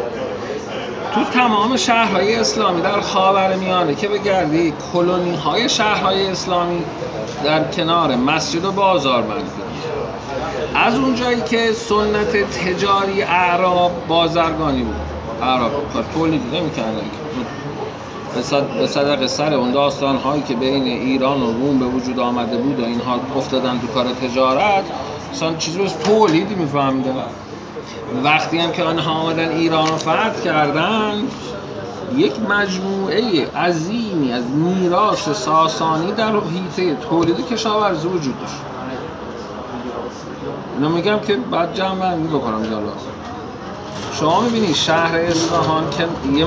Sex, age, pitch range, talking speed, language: male, 40-59, 135-185 Hz, 120 wpm, Persian